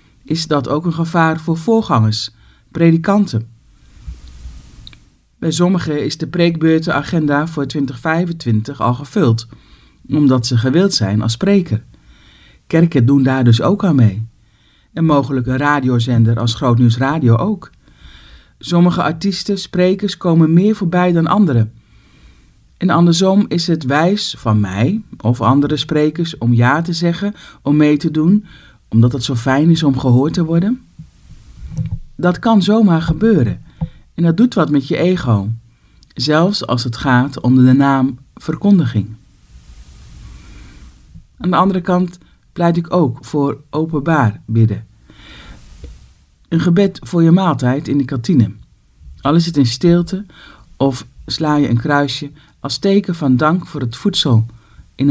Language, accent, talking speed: Dutch, Dutch, 140 wpm